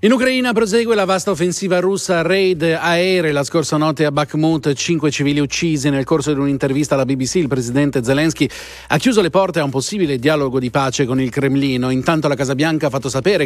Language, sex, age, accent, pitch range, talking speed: Italian, male, 40-59, native, 130-170 Hz, 205 wpm